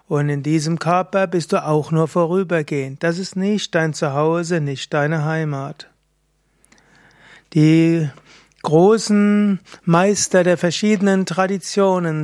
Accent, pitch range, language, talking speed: German, 155-190 Hz, German, 115 wpm